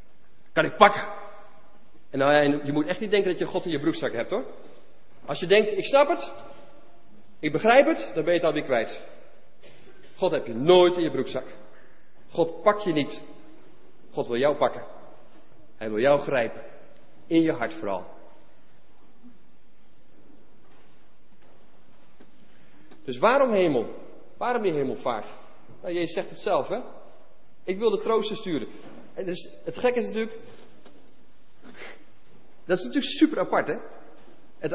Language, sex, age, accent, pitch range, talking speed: English, male, 40-59, Dutch, 165-270 Hz, 150 wpm